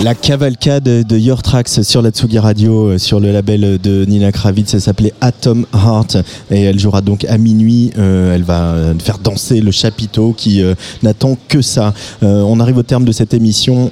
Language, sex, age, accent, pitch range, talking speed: French, male, 30-49, French, 95-115 Hz, 195 wpm